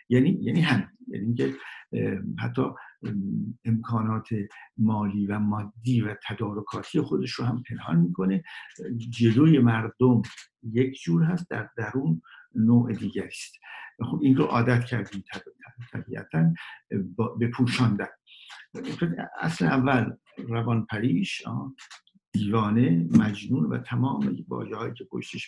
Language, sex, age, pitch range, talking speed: Persian, male, 60-79, 100-130 Hz, 110 wpm